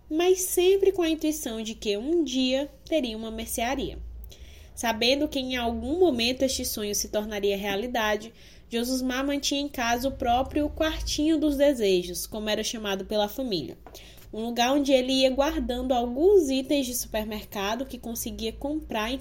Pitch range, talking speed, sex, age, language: 215-280 Hz, 160 wpm, female, 10-29, Portuguese